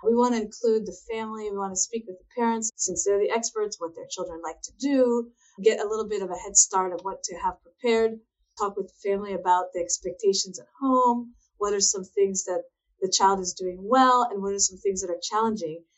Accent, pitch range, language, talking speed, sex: American, 195-250 Hz, English, 235 wpm, female